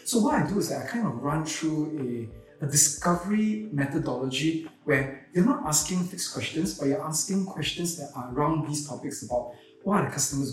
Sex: male